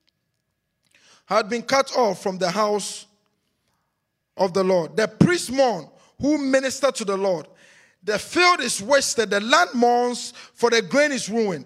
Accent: Nigerian